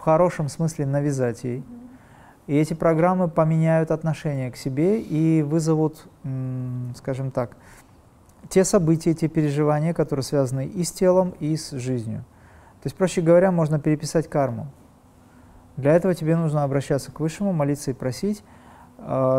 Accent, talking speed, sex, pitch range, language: native, 140 wpm, male, 130-160 Hz, Russian